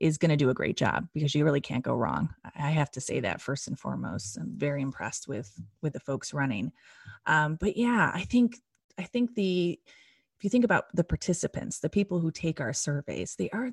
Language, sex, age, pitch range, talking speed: English, female, 30-49, 145-175 Hz, 220 wpm